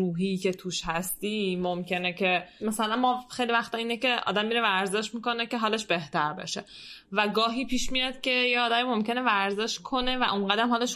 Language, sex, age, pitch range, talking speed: Persian, female, 10-29, 180-220 Hz, 175 wpm